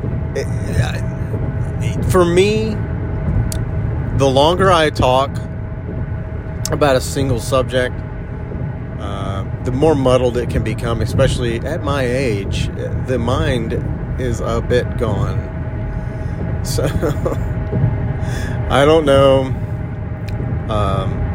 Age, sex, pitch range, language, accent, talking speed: 40-59, male, 105-125 Hz, English, American, 90 wpm